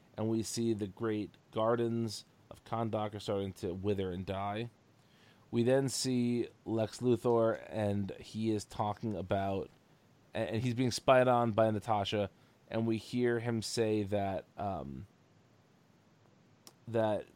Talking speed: 135 wpm